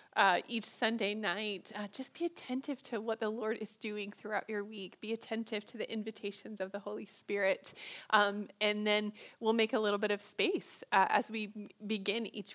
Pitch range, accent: 205-265 Hz, American